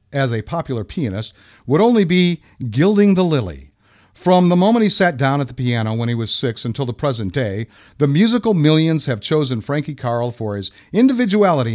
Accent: American